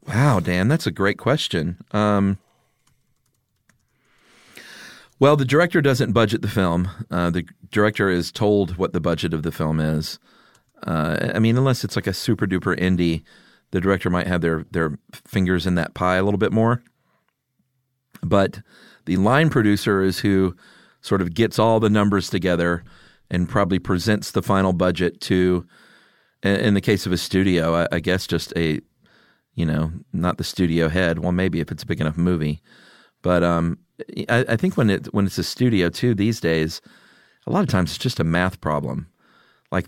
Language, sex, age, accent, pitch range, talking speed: English, male, 40-59, American, 90-105 Hz, 180 wpm